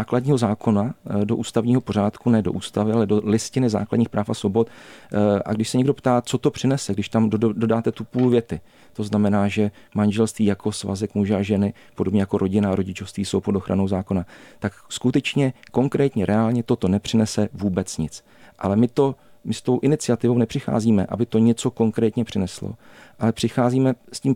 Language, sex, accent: Czech, male, native